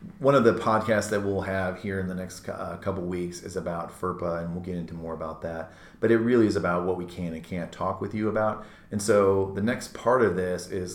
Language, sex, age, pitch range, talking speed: English, male, 30-49, 90-105 Hz, 250 wpm